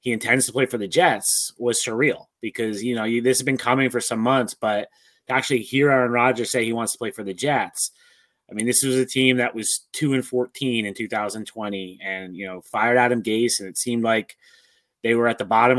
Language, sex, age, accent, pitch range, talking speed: English, male, 30-49, American, 110-130 Hz, 235 wpm